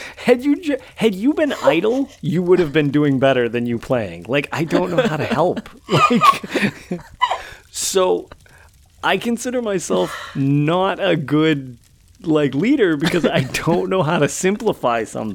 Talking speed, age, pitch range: 155 wpm, 30-49, 95-155 Hz